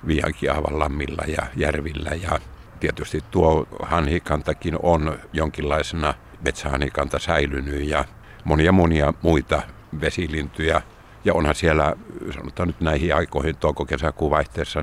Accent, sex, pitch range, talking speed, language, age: native, male, 75-85 Hz, 105 wpm, Finnish, 60-79